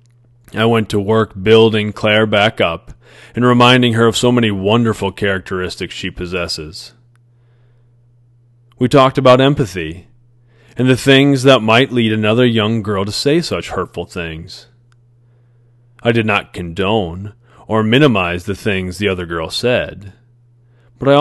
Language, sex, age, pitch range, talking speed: English, male, 30-49, 100-120 Hz, 140 wpm